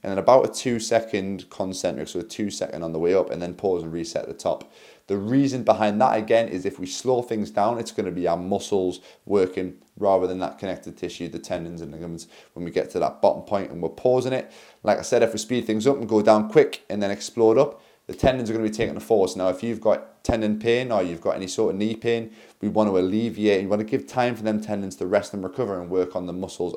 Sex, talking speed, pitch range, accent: male, 265 wpm, 90-115 Hz, British